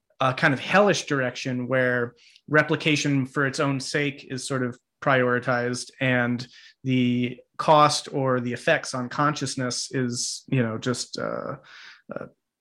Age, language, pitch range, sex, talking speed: 30-49, English, 130-150 Hz, male, 135 wpm